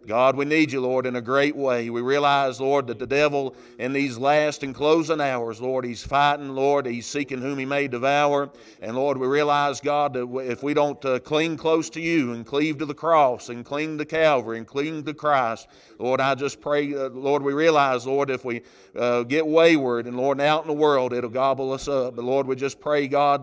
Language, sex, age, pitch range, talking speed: English, male, 40-59, 130-150 Hz, 225 wpm